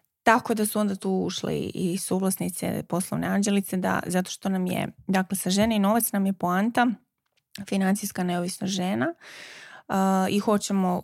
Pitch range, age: 175-210 Hz, 20-39